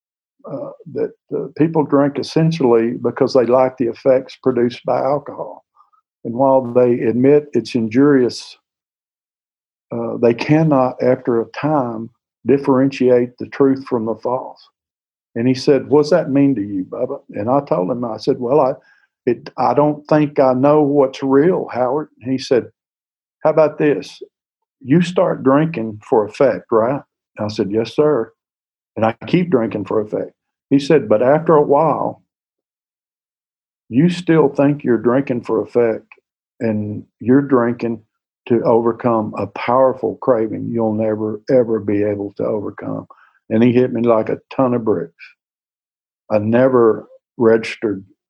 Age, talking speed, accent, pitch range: 50-69, 150 wpm, American, 115-140 Hz